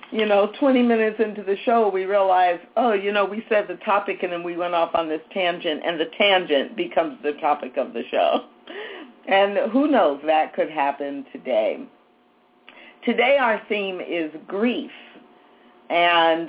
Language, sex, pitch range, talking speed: English, female, 170-210 Hz, 165 wpm